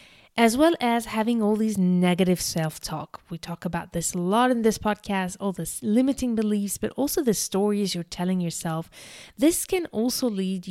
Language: English